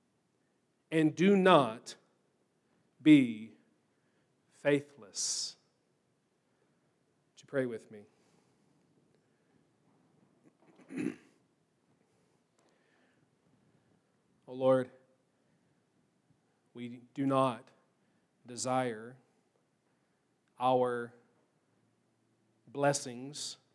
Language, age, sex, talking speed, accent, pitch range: English, 40-59, male, 45 wpm, American, 125-140 Hz